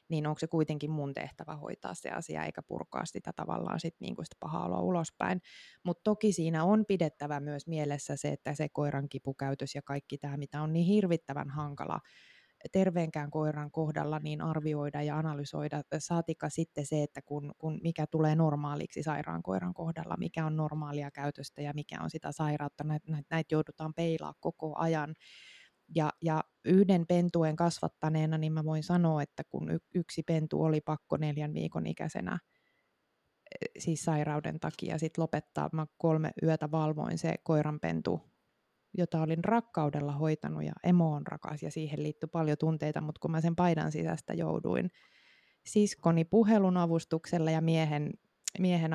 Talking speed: 155 wpm